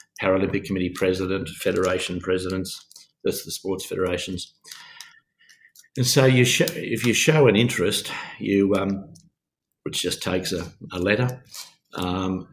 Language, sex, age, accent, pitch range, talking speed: English, male, 50-69, Australian, 90-105 Hz, 130 wpm